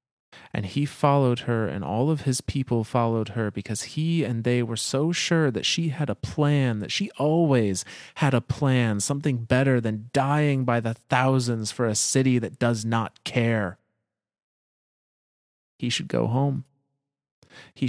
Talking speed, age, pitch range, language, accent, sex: 160 wpm, 30-49, 105-125 Hz, English, American, male